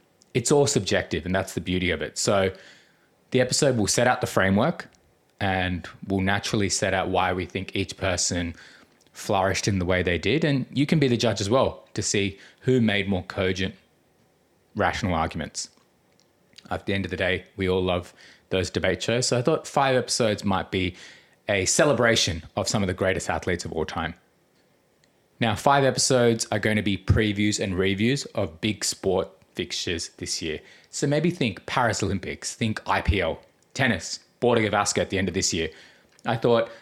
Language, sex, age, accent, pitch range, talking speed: English, male, 20-39, Australian, 95-115 Hz, 185 wpm